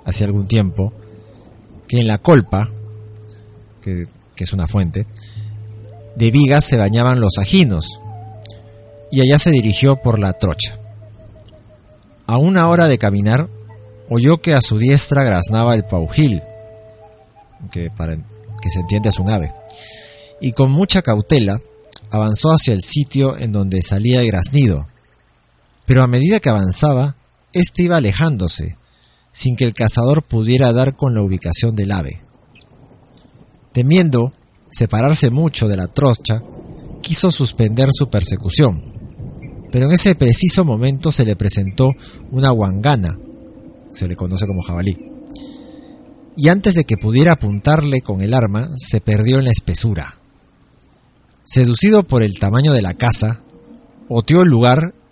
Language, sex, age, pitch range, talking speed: Spanish, male, 40-59, 105-140 Hz, 135 wpm